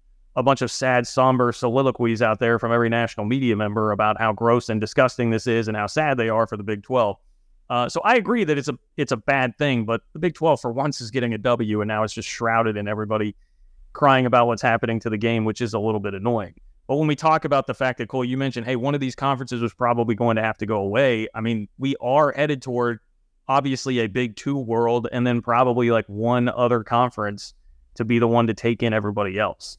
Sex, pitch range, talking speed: male, 110-130 Hz, 245 wpm